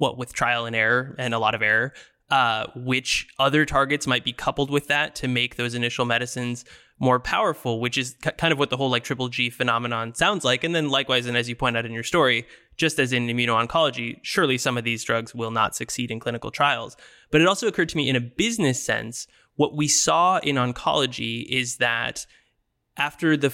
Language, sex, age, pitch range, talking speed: English, male, 20-39, 120-145 Hz, 215 wpm